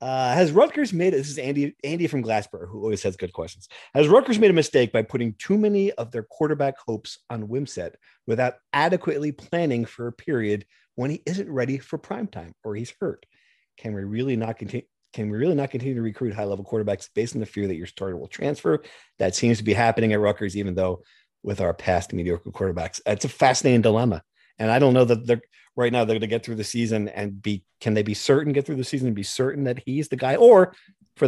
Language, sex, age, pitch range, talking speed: English, male, 40-59, 105-135 Hz, 230 wpm